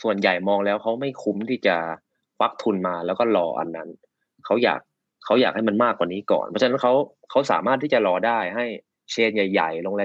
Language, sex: Thai, male